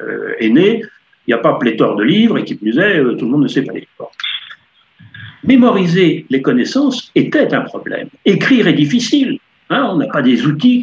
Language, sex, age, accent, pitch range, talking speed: French, male, 60-79, French, 155-255 Hz, 200 wpm